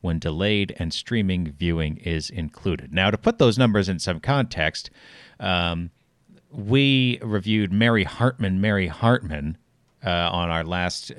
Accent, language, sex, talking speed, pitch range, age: American, English, male, 140 wpm, 90-120 Hz, 40-59